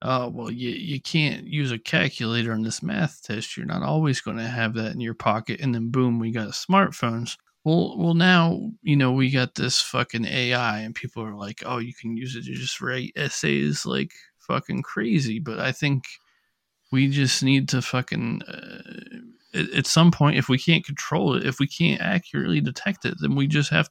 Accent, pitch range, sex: American, 120-160 Hz, male